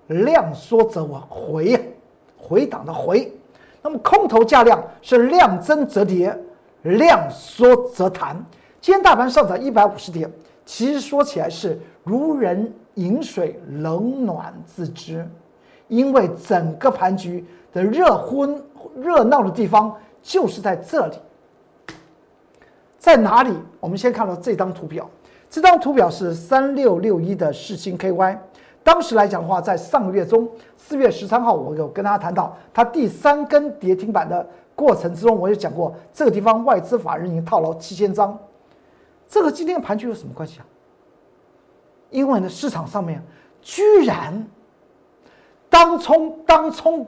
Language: Chinese